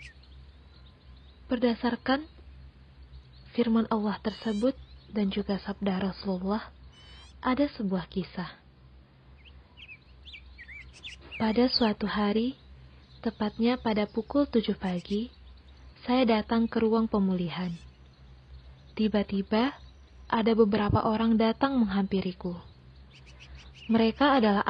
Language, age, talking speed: Indonesian, 20-39, 80 wpm